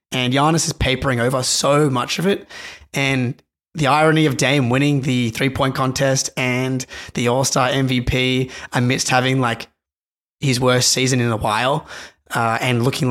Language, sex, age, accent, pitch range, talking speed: English, male, 20-39, Australian, 120-150 Hz, 155 wpm